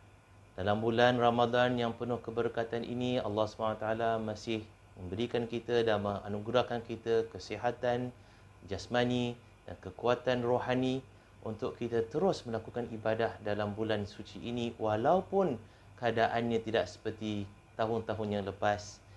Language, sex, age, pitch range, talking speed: Malay, male, 30-49, 105-125 Hz, 115 wpm